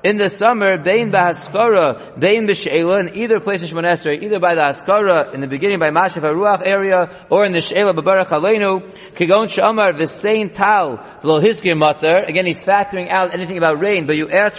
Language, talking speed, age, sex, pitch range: English, 185 wpm, 30-49, male, 170-205 Hz